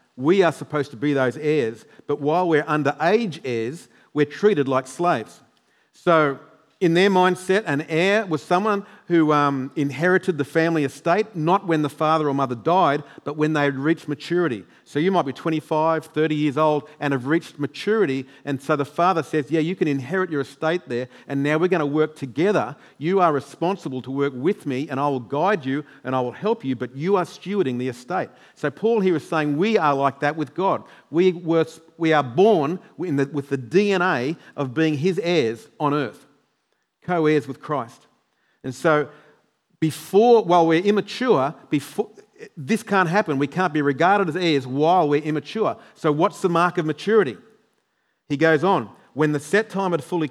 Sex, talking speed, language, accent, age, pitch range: male, 190 wpm, English, Australian, 50-69, 140-175 Hz